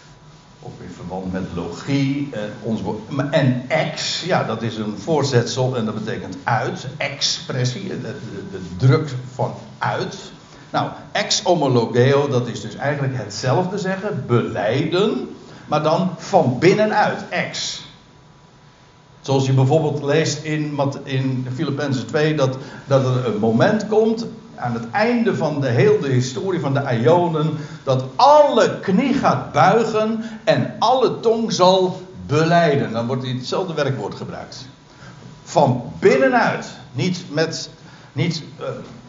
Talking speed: 130 wpm